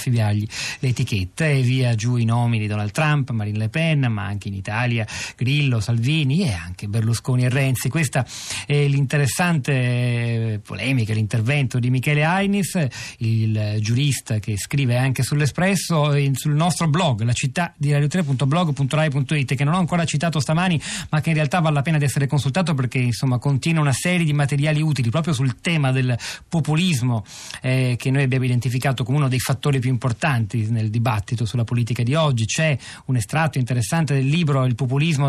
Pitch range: 115-150 Hz